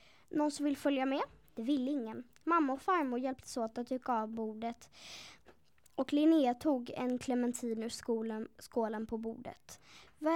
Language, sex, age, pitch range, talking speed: Swedish, female, 20-39, 230-310 Hz, 155 wpm